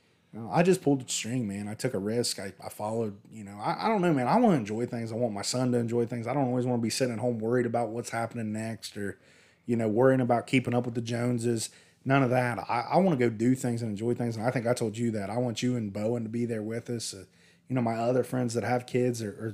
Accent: American